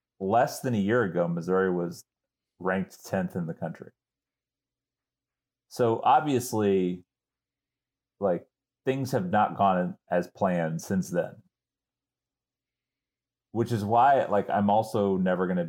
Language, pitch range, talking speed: English, 95-125 Hz, 120 wpm